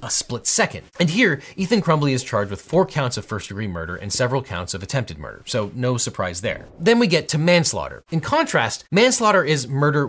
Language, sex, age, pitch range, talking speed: English, male, 30-49, 110-155 Hz, 215 wpm